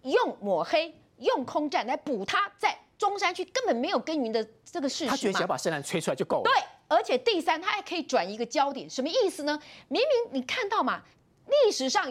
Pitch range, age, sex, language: 260-395 Hz, 30-49, female, Chinese